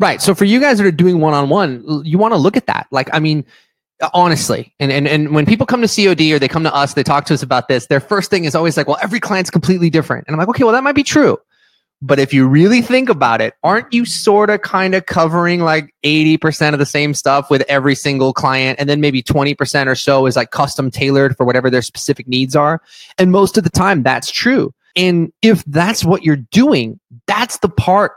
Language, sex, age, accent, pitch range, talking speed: English, male, 20-39, American, 135-180 Hz, 245 wpm